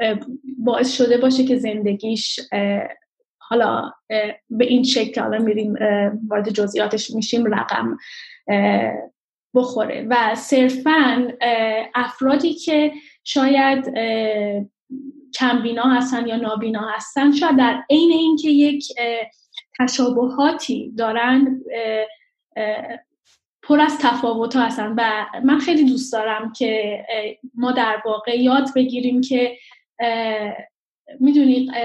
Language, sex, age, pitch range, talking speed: Persian, female, 10-29, 220-265 Hz, 90 wpm